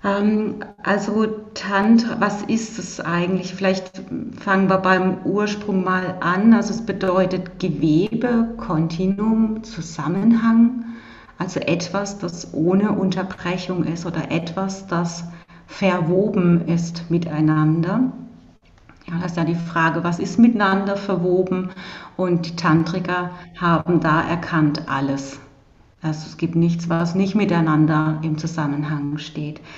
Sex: female